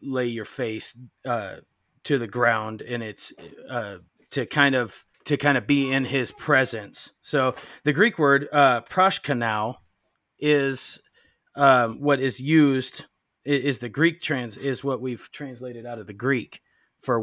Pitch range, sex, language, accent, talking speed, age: 120-145 Hz, male, English, American, 155 wpm, 30-49